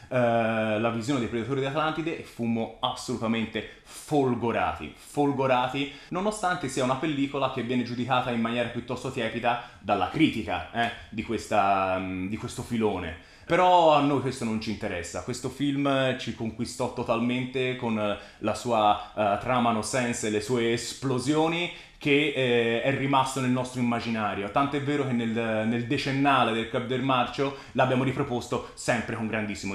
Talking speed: 145 wpm